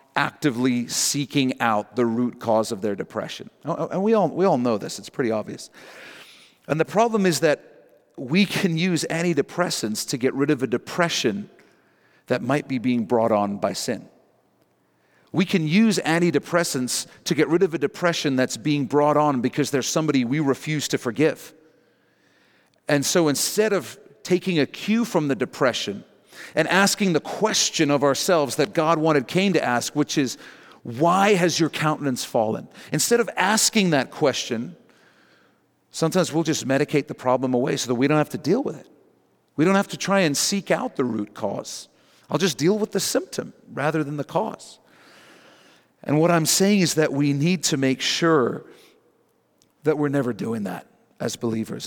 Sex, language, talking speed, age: male, English, 175 wpm, 40-59